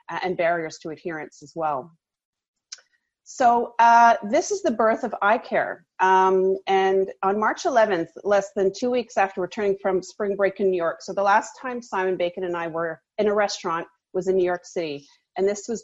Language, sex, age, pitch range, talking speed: English, female, 30-49, 175-205 Hz, 195 wpm